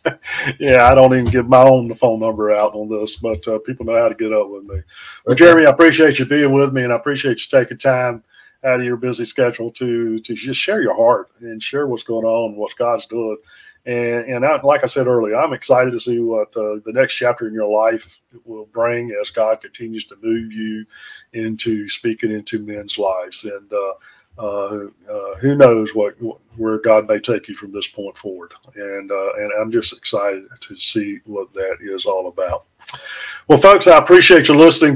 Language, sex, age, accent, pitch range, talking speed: English, male, 40-59, American, 110-140 Hz, 210 wpm